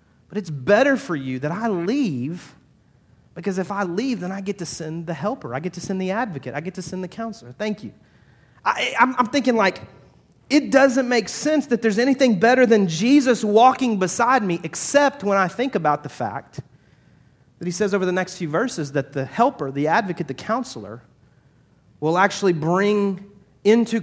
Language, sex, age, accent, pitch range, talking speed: English, male, 30-49, American, 140-210 Hz, 190 wpm